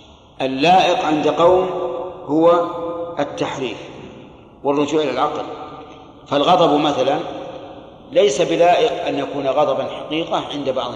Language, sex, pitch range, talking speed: Arabic, male, 135-160 Hz, 100 wpm